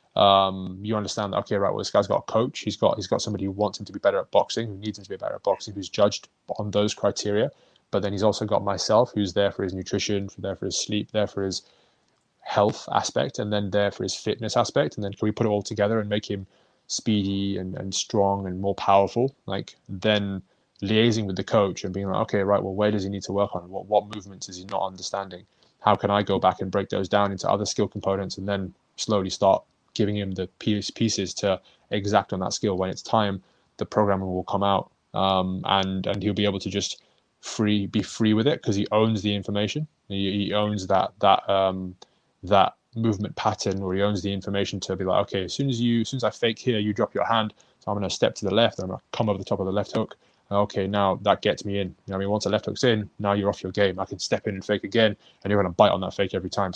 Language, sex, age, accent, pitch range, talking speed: English, male, 20-39, British, 95-105 Hz, 260 wpm